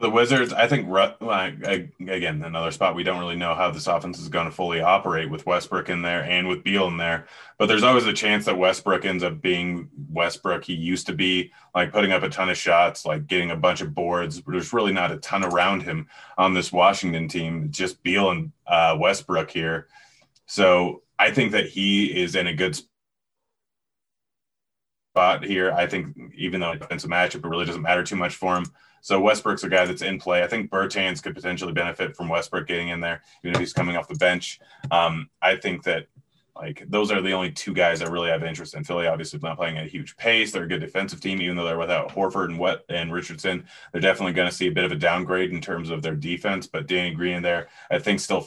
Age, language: 20-39, English